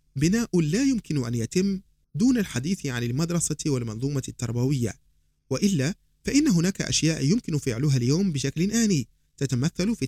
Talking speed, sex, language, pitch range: 130 wpm, male, Arabic, 115-160 Hz